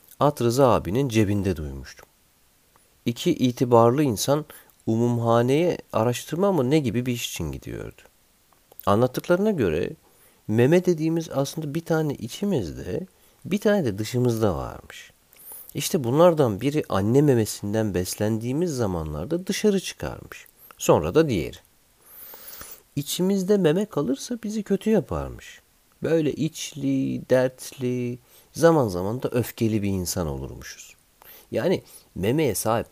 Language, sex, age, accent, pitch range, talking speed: Turkish, male, 50-69, native, 105-160 Hz, 110 wpm